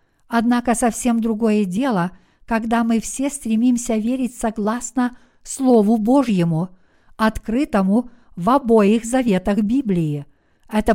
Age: 50-69